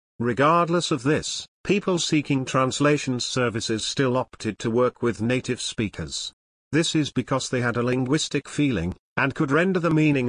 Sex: male